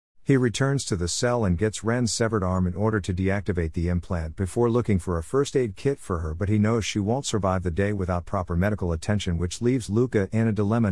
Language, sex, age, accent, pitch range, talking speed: English, male, 50-69, American, 90-115 Hz, 235 wpm